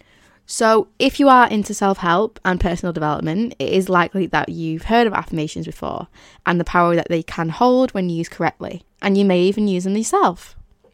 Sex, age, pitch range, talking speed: female, 10-29, 175-225 Hz, 190 wpm